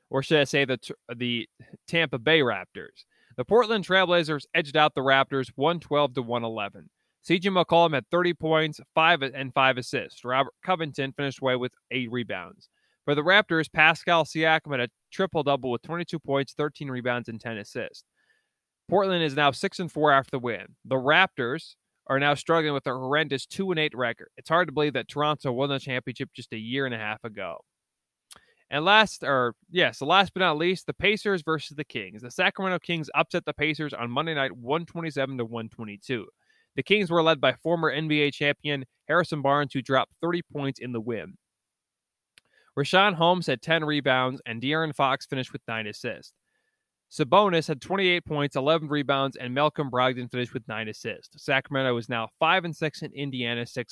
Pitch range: 130-165 Hz